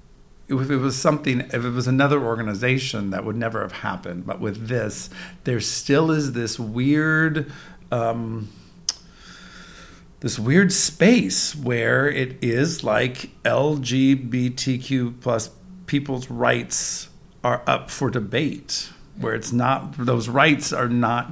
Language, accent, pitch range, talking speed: English, American, 115-145 Hz, 125 wpm